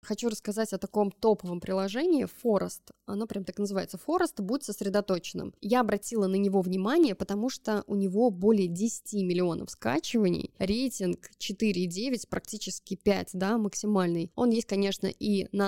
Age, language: 20-39, Russian